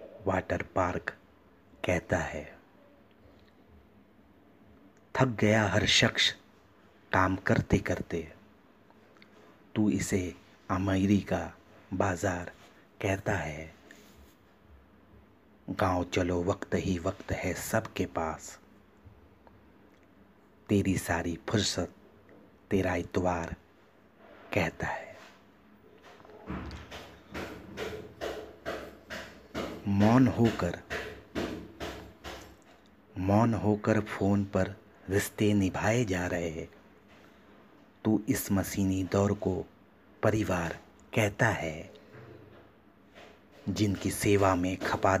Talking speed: 75 wpm